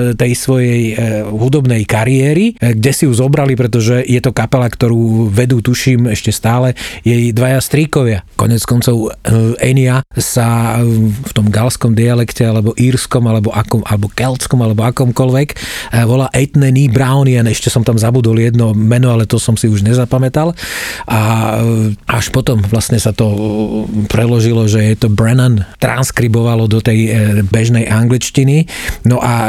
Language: Slovak